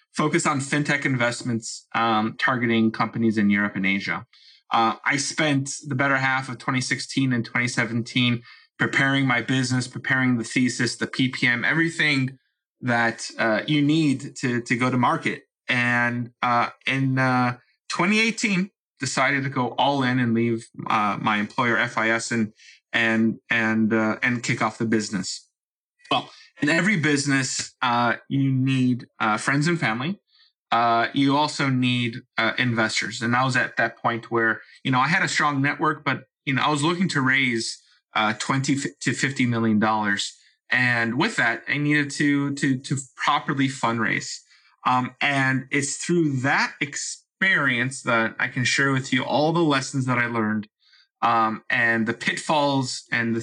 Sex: male